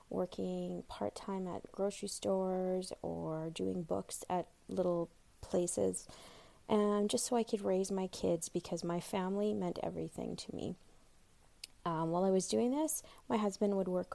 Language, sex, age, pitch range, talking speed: English, female, 30-49, 170-205 Hz, 155 wpm